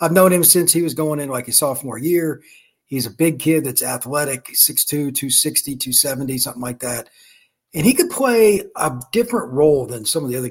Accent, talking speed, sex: American, 205 wpm, male